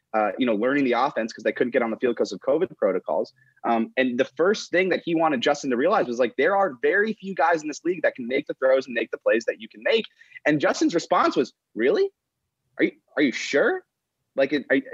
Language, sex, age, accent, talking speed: English, male, 30-49, American, 245 wpm